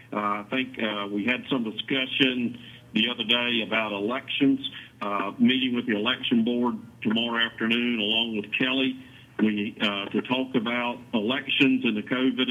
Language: English